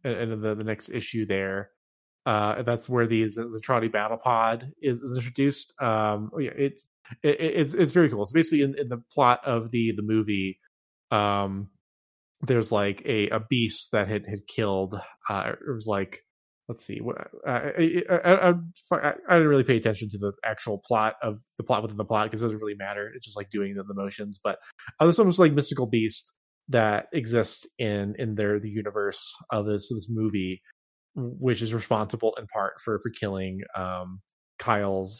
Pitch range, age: 105-130 Hz, 20-39